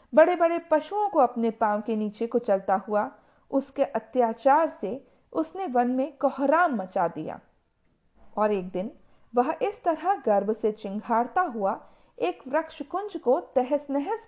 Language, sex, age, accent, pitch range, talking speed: Hindi, female, 50-69, native, 205-295 Hz, 150 wpm